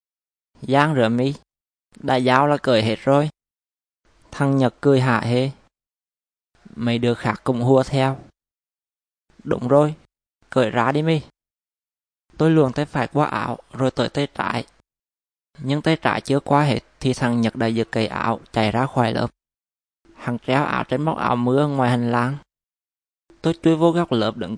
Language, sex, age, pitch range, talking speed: Vietnamese, male, 20-39, 110-140 Hz, 170 wpm